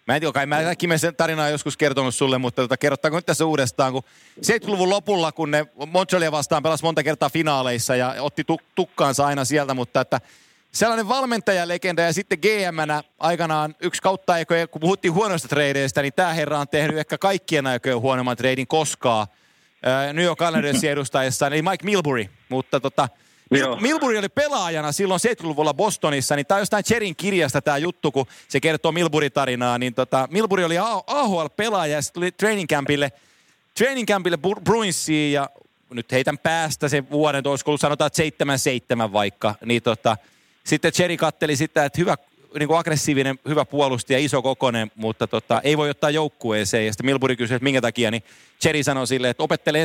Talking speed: 170 wpm